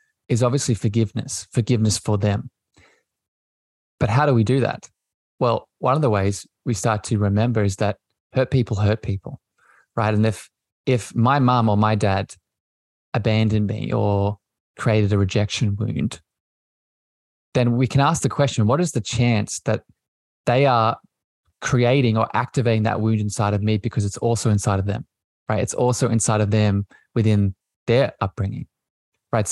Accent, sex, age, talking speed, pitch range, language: Australian, male, 20-39, 165 wpm, 105-120 Hz, English